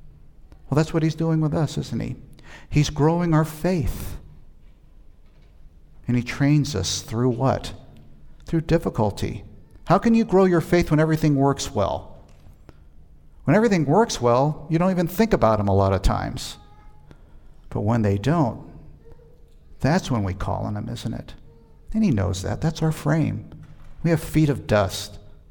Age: 50-69